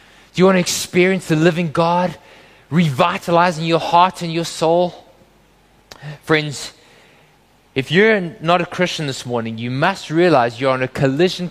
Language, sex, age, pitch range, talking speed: English, male, 20-39, 135-170 Hz, 150 wpm